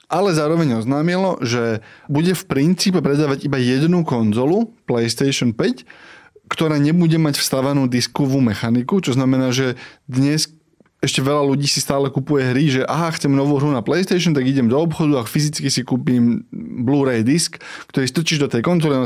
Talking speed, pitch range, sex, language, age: 165 wpm, 125-155 Hz, male, Slovak, 20-39